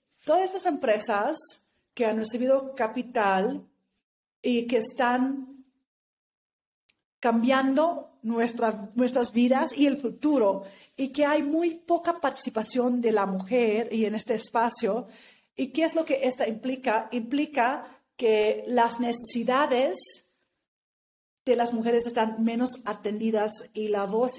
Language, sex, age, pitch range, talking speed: Spanish, female, 40-59, 215-265 Hz, 125 wpm